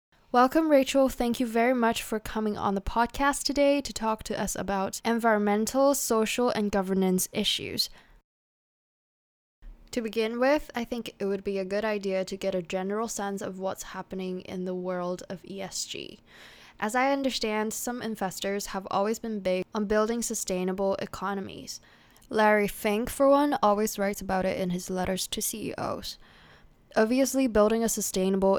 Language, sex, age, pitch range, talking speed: English, female, 10-29, 195-230 Hz, 160 wpm